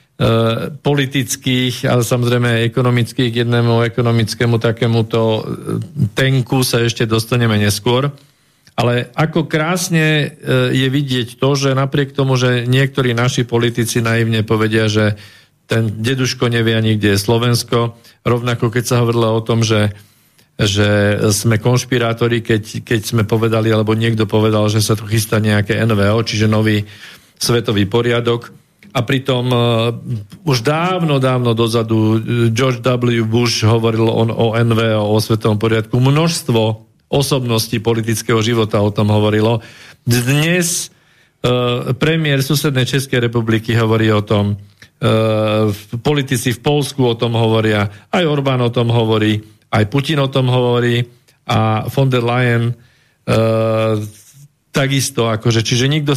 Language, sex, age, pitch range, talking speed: Slovak, male, 40-59, 110-130 Hz, 130 wpm